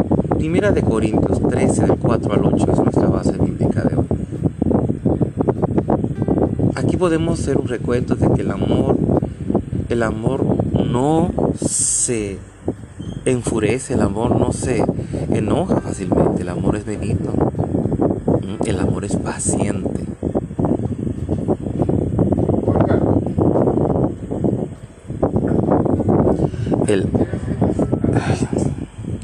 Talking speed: 90 wpm